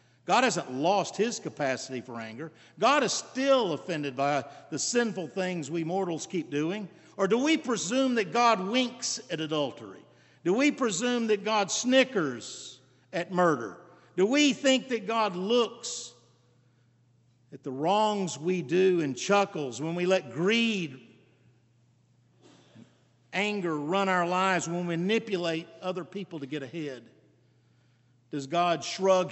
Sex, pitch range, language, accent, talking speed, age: male, 130-200 Hz, English, American, 140 wpm, 50-69